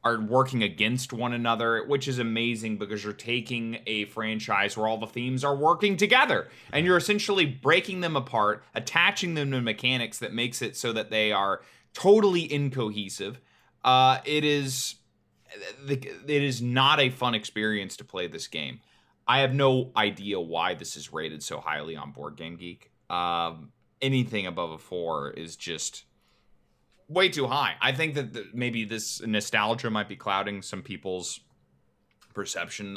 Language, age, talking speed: English, 20-39, 160 wpm